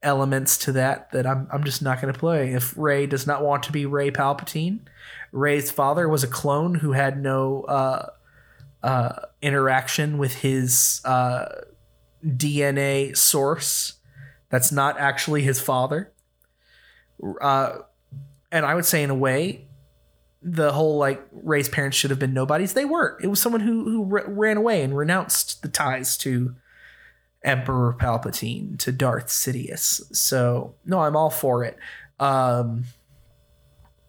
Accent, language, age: American, English, 20-39